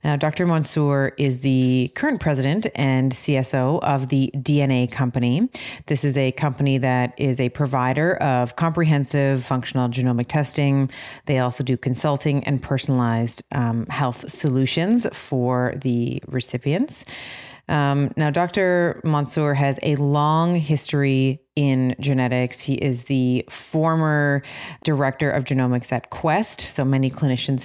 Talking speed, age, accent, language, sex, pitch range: 130 wpm, 30-49, American, English, female, 130-150 Hz